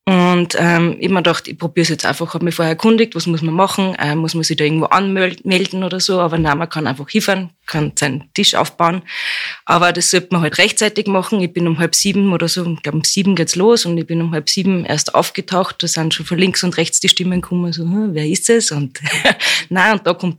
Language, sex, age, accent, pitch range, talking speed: German, female, 20-39, German, 160-185 Hz, 255 wpm